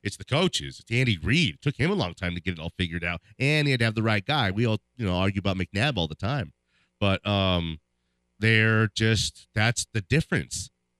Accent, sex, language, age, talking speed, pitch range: American, male, English, 30-49, 235 wpm, 100-145 Hz